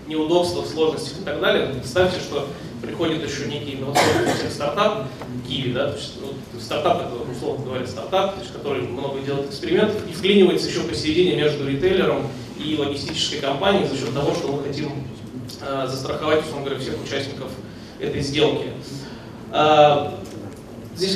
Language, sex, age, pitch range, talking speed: Russian, male, 20-39, 130-160 Hz, 145 wpm